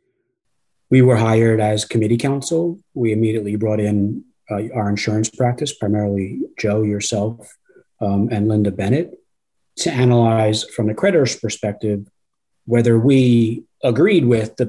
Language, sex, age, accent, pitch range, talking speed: English, male, 30-49, American, 110-125 Hz, 130 wpm